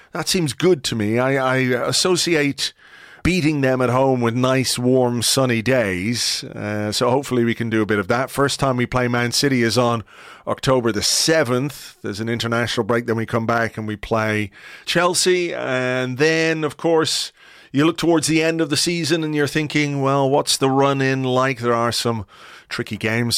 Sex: male